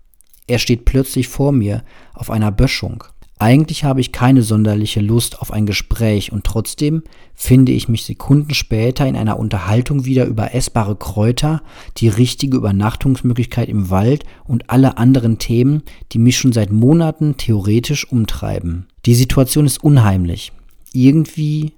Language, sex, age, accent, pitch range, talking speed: German, male, 40-59, German, 105-130 Hz, 145 wpm